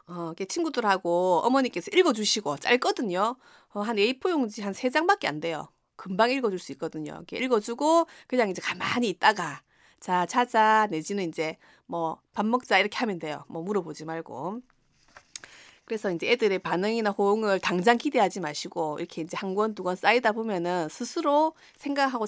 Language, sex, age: Korean, female, 30-49